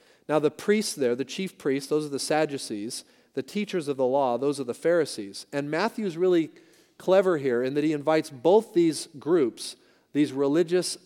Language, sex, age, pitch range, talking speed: English, male, 40-59, 140-185 Hz, 185 wpm